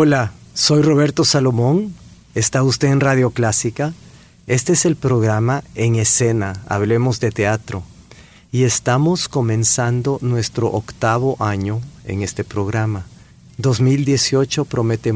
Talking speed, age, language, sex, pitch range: 115 wpm, 50-69, Spanish, male, 105-130 Hz